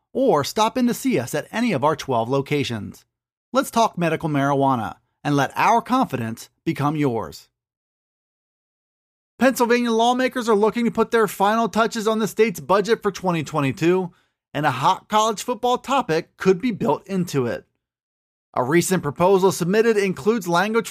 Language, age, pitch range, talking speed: English, 30-49, 160-215 Hz, 155 wpm